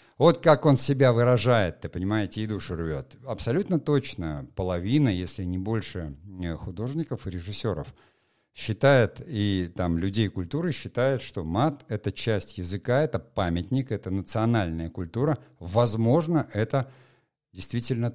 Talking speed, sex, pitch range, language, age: 130 wpm, male, 100-135 Hz, Russian, 50-69